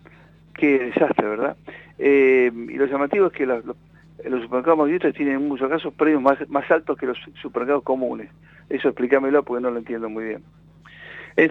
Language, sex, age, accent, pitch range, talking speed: Spanish, male, 60-79, Argentinian, 115-145 Hz, 170 wpm